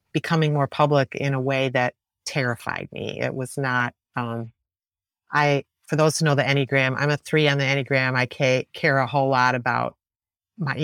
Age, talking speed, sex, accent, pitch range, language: 40-59, 185 wpm, female, American, 125-150 Hz, English